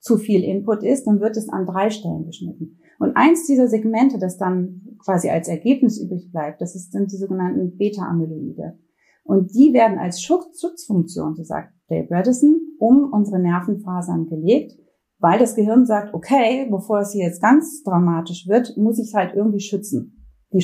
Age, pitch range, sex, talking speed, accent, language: 30-49, 175-225 Hz, female, 175 wpm, German, German